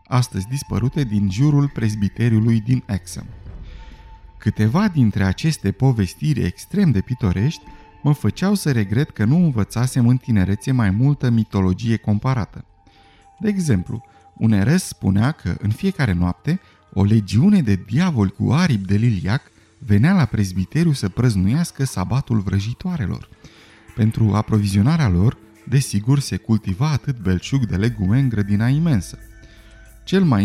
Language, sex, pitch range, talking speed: Romanian, male, 100-140 Hz, 130 wpm